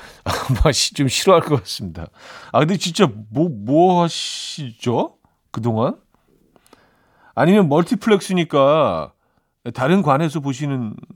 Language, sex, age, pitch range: Korean, male, 40-59, 105-155 Hz